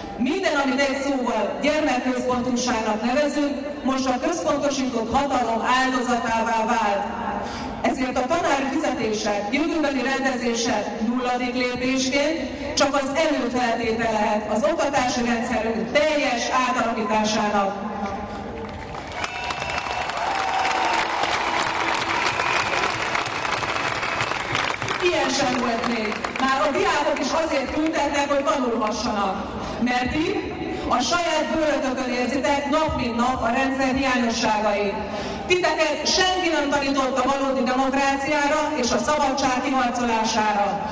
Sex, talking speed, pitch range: female, 90 wpm, 235-290 Hz